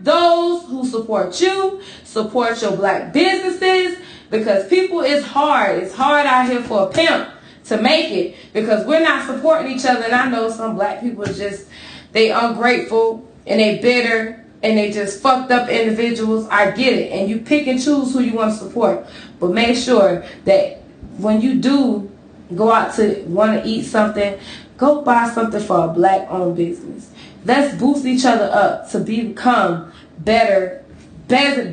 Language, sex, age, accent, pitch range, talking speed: English, female, 20-39, American, 215-290 Hz, 170 wpm